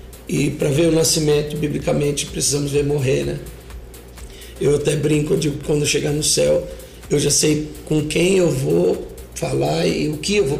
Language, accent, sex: Portuguese, Brazilian, male